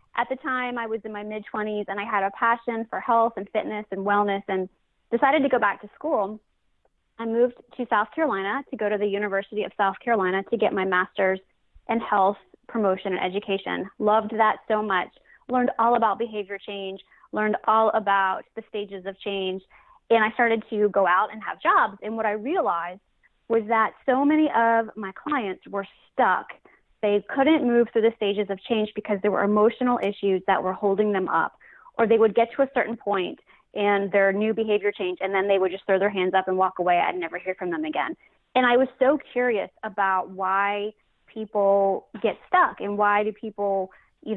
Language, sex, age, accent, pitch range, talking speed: English, female, 20-39, American, 195-230 Hz, 205 wpm